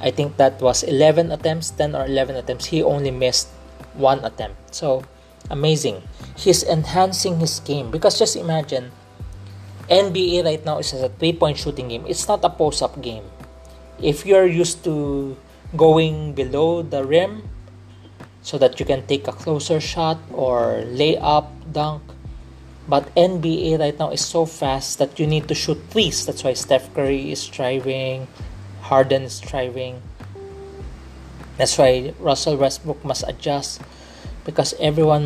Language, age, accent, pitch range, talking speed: English, 20-39, Filipino, 100-155 Hz, 150 wpm